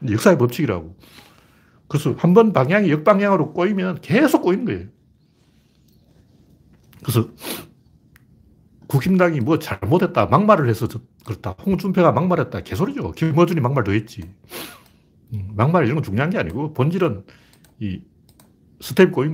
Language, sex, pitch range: Korean, male, 110-165 Hz